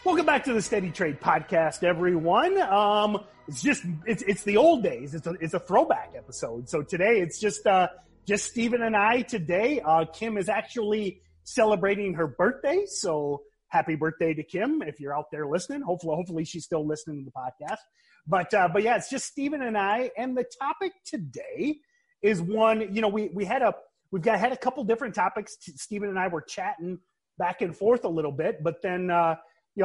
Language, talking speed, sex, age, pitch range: English, 200 wpm, male, 30-49, 165-230 Hz